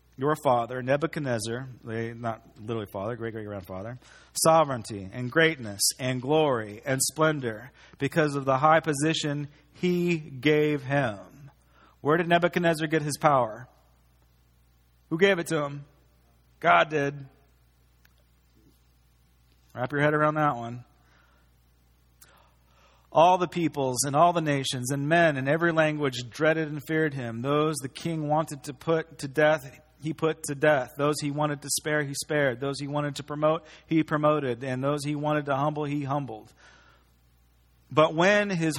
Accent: American